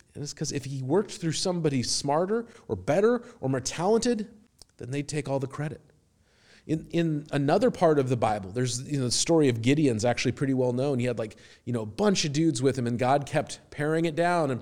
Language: English